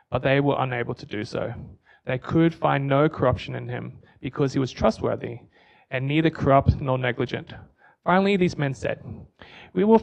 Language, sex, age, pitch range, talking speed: English, male, 30-49, 140-215 Hz, 175 wpm